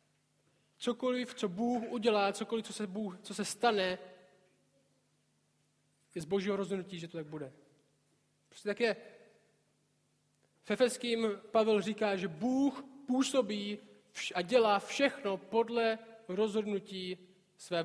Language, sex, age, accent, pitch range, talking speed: Czech, male, 20-39, native, 175-225 Hz, 115 wpm